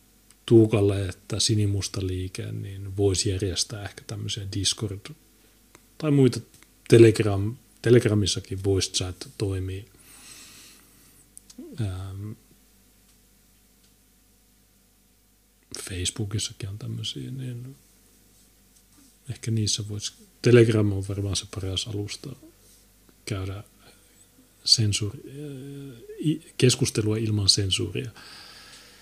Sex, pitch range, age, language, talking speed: male, 100-120 Hz, 30-49, Finnish, 75 wpm